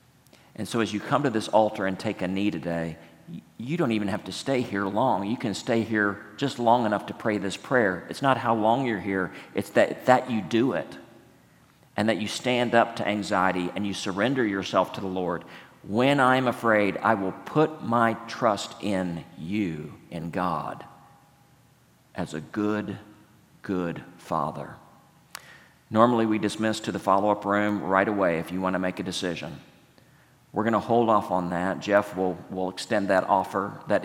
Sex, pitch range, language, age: male, 95-115 Hz, English, 50-69